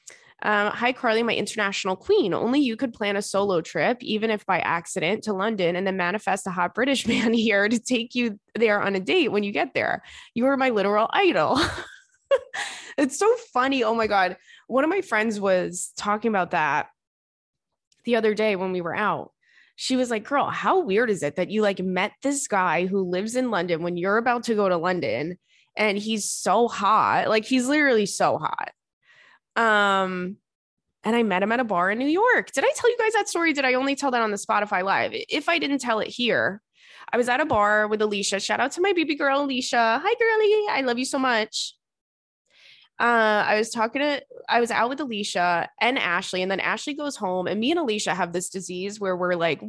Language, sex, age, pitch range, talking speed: English, female, 20-39, 195-265 Hz, 215 wpm